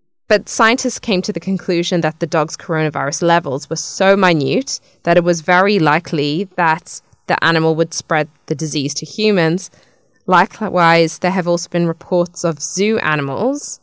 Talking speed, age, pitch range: 160 wpm, 20-39, 160-185 Hz